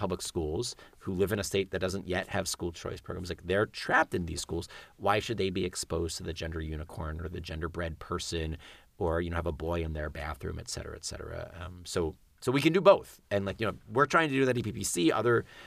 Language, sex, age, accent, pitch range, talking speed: English, male, 30-49, American, 80-95 Hz, 255 wpm